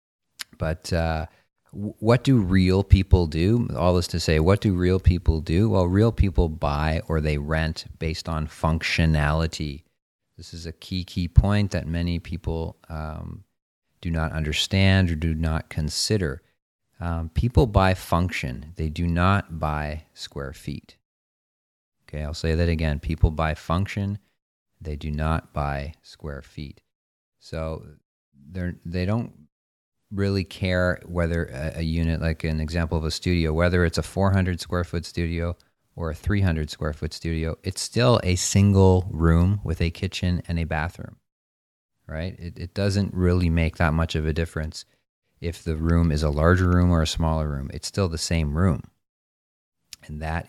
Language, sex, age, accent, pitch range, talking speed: English, male, 40-59, American, 80-90 Hz, 160 wpm